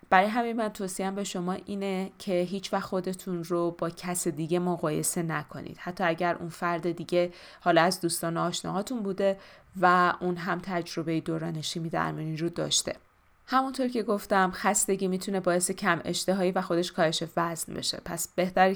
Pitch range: 165-195 Hz